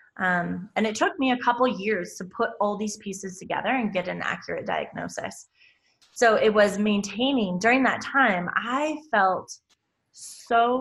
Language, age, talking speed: English, 20-39, 160 wpm